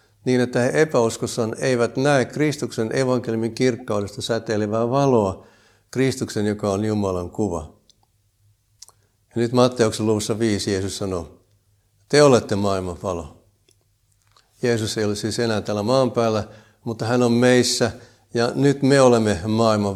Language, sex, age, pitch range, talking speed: Finnish, male, 60-79, 100-120 Hz, 130 wpm